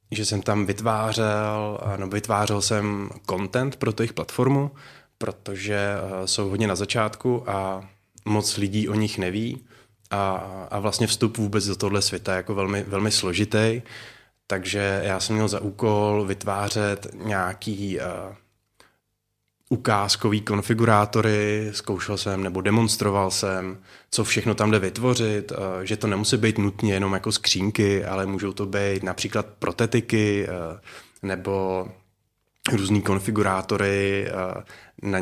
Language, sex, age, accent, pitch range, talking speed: Czech, male, 20-39, native, 95-110 Hz, 130 wpm